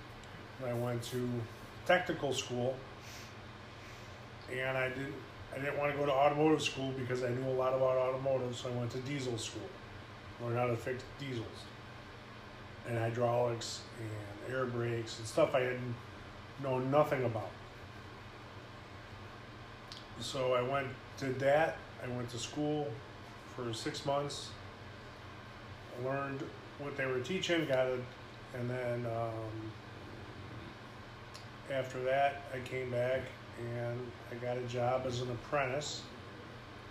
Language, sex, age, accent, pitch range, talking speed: English, male, 30-49, American, 110-130 Hz, 130 wpm